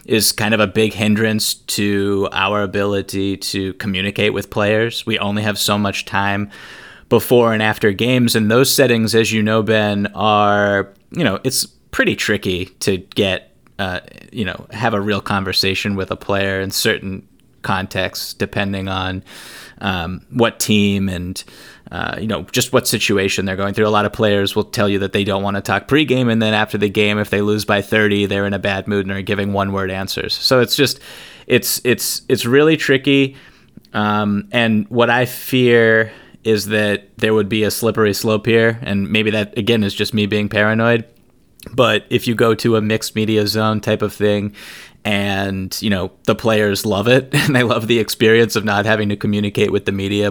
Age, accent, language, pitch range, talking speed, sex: 20-39, American, English, 100-110 Hz, 195 wpm, male